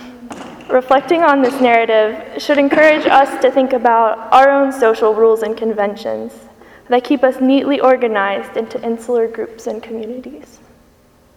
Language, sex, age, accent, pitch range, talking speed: English, female, 10-29, American, 225-270 Hz, 135 wpm